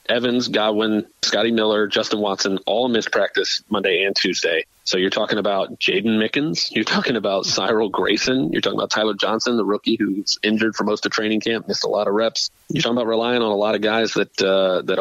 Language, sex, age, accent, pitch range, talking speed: English, male, 30-49, American, 100-115 Hz, 215 wpm